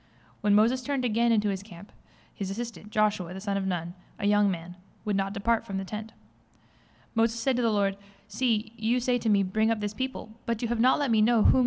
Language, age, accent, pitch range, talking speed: English, 10-29, American, 200-230 Hz, 230 wpm